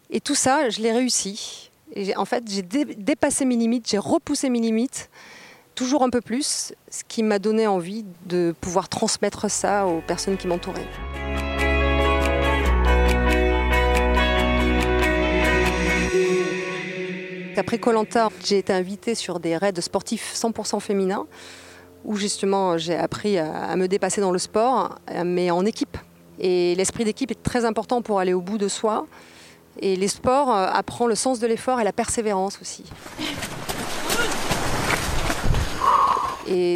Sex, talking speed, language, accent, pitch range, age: female, 140 wpm, French, French, 170-220 Hz, 40-59